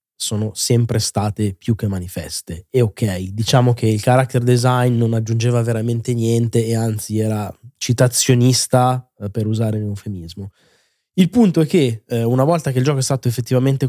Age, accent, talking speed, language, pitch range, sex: 20-39, native, 170 wpm, Italian, 115-135 Hz, male